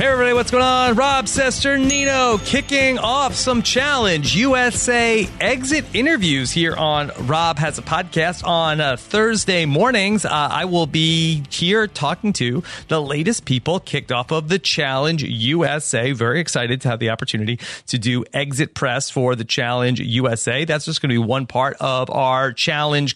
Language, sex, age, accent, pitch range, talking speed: English, male, 40-59, American, 125-180 Hz, 165 wpm